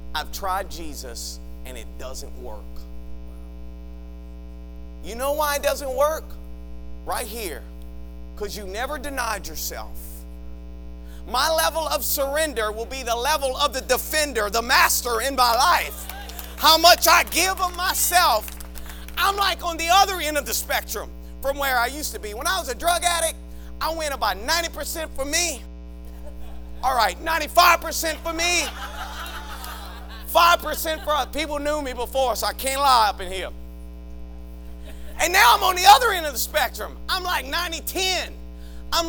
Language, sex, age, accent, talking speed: English, male, 40-59, American, 155 wpm